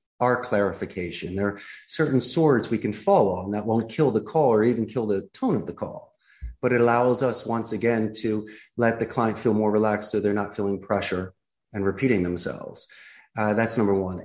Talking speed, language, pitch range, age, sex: 200 wpm, English, 105-120 Hz, 30-49, male